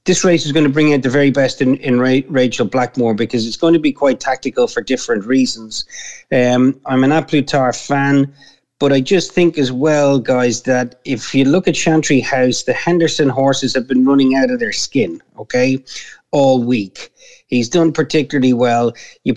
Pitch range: 130-145 Hz